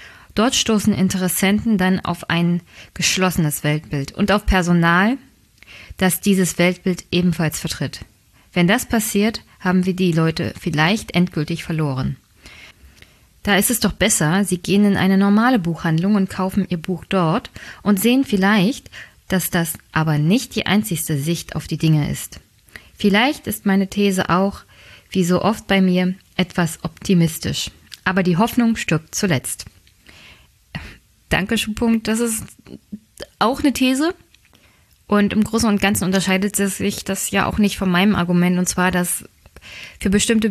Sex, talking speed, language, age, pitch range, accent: female, 145 wpm, German, 20-39, 175-205 Hz, German